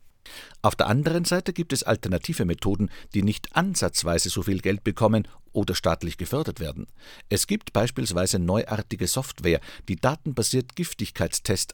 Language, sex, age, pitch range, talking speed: German, male, 50-69, 90-125 Hz, 140 wpm